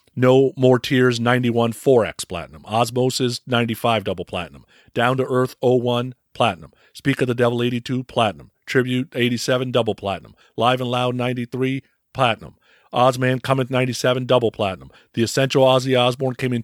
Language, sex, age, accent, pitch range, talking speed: English, male, 50-69, American, 110-130 Hz, 150 wpm